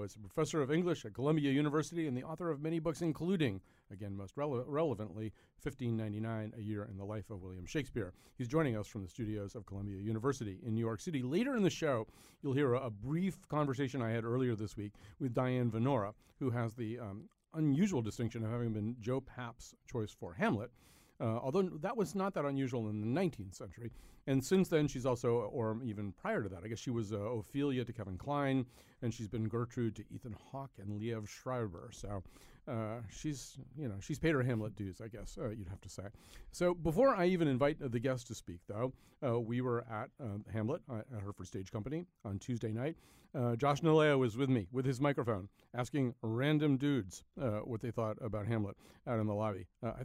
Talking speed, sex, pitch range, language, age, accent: 215 wpm, male, 110-140 Hz, English, 40-59, American